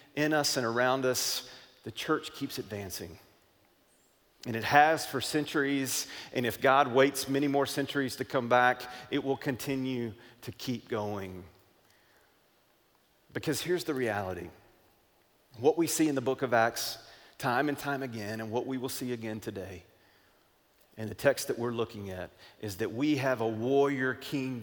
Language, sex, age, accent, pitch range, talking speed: English, male, 40-59, American, 105-135 Hz, 165 wpm